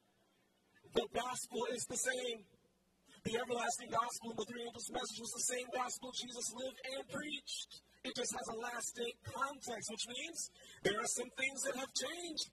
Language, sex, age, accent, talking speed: English, male, 50-69, American, 170 wpm